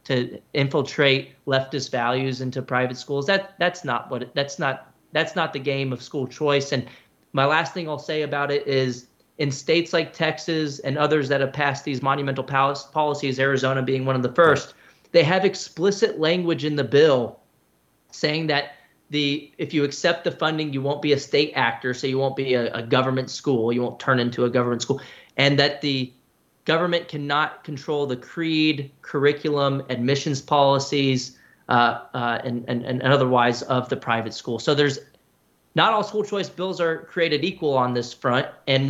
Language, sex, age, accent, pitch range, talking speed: English, male, 30-49, American, 130-155 Hz, 175 wpm